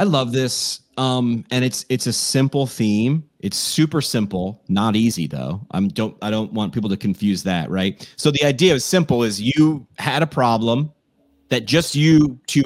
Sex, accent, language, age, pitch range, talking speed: male, American, English, 30-49, 105-150 Hz, 190 wpm